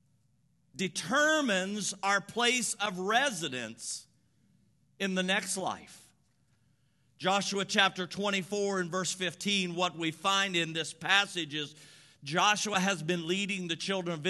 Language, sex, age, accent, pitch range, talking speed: English, male, 50-69, American, 165-205 Hz, 120 wpm